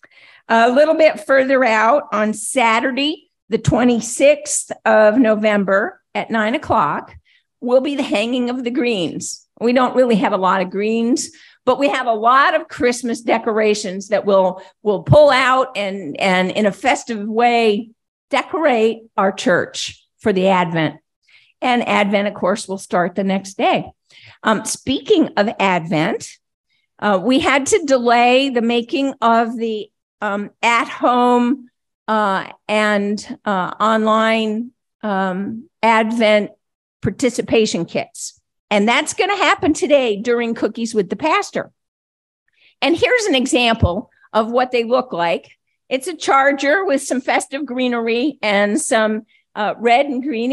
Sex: female